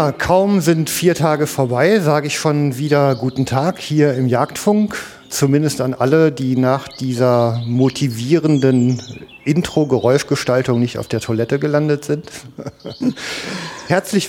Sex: male